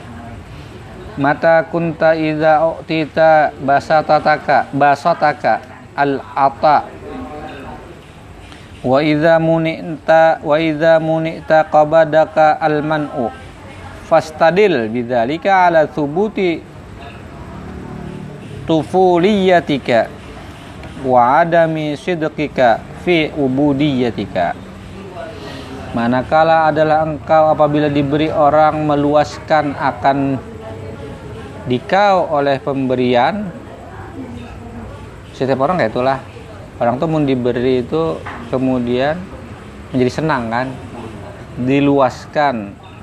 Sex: male